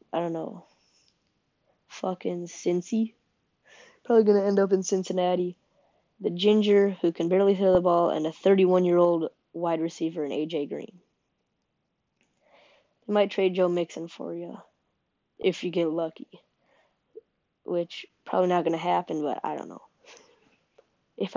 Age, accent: 20-39, American